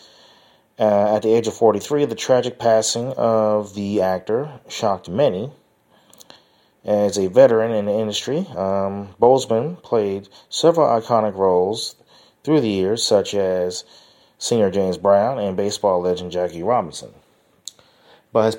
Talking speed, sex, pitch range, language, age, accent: 130 wpm, male, 100-115 Hz, English, 30-49, American